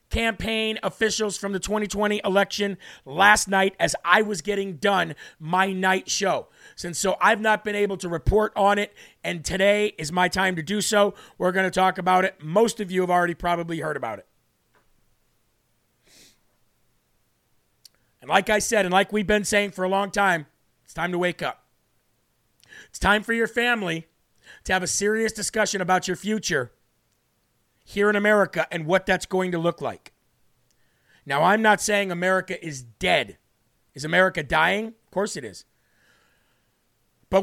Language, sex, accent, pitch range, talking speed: English, male, American, 170-205 Hz, 170 wpm